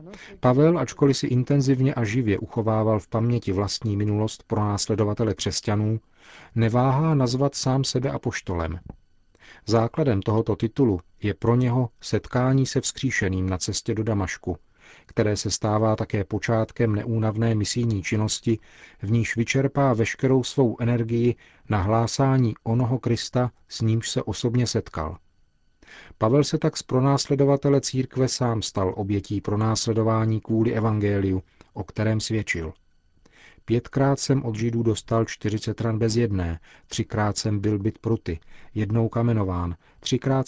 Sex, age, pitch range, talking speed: male, 40-59, 105-125 Hz, 130 wpm